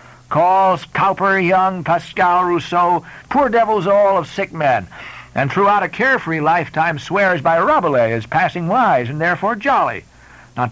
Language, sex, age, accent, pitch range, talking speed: English, male, 60-79, American, 125-200 Hz, 145 wpm